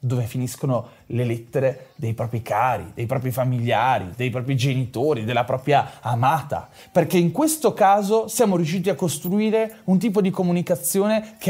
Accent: native